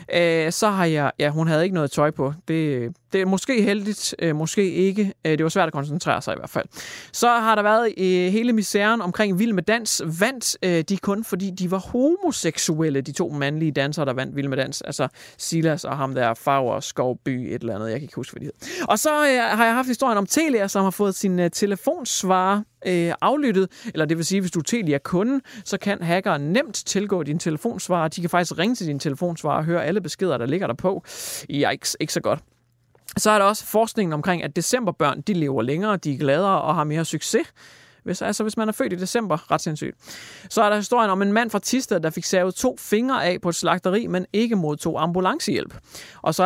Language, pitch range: Danish, 155-210 Hz